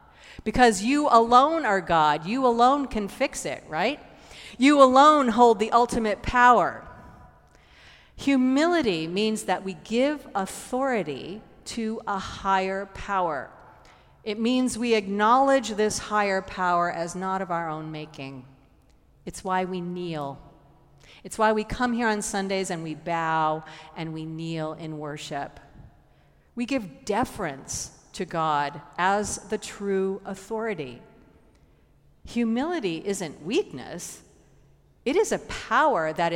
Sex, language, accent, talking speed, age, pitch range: female, English, American, 125 wpm, 40-59, 170-240 Hz